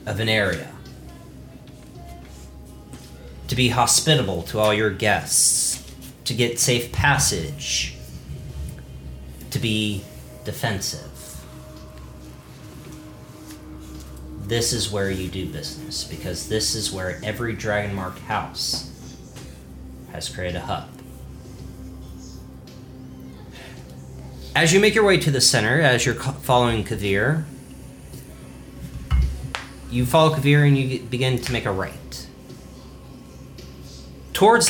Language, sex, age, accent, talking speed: English, male, 40-59, American, 100 wpm